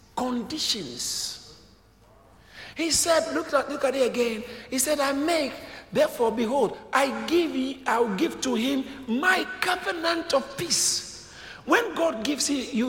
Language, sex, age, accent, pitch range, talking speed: English, male, 50-69, Nigerian, 175-275 Hz, 145 wpm